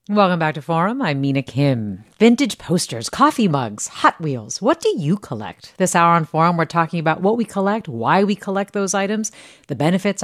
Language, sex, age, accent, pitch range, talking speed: English, female, 40-59, American, 150-210 Hz, 200 wpm